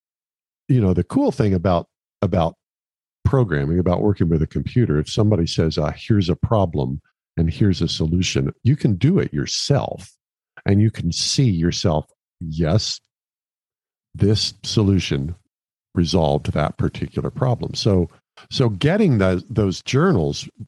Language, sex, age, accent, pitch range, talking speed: English, male, 50-69, American, 80-110 Hz, 135 wpm